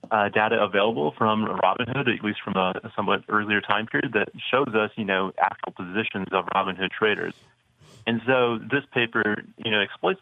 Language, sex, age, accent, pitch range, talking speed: English, male, 30-49, American, 95-110 Hz, 180 wpm